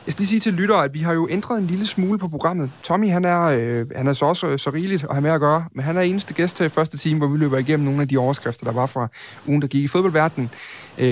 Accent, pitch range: native, 130-155 Hz